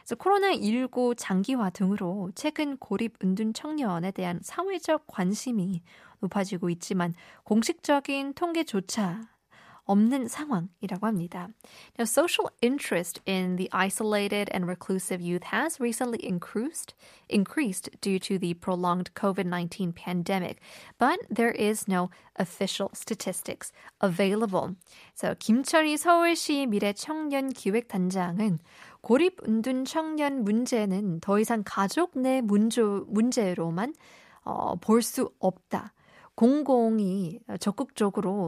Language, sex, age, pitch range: Korean, female, 20-39, 185-250 Hz